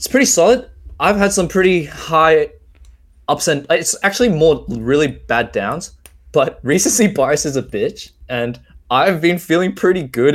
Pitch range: 110-155 Hz